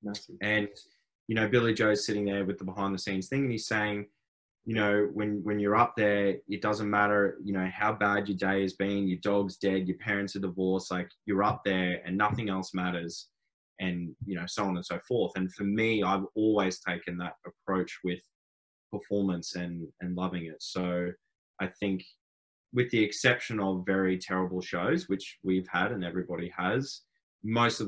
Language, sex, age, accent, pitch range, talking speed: English, male, 20-39, Australian, 95-105 Hz, 190 wpm